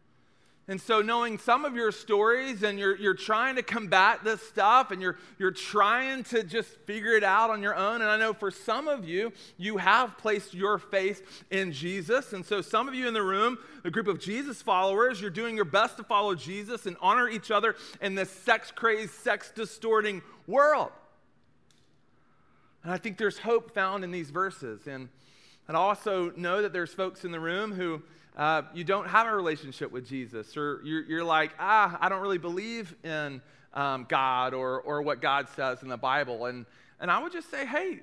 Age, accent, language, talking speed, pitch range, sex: 40-59, American, English, 195 wpm, 170-225 Hz, male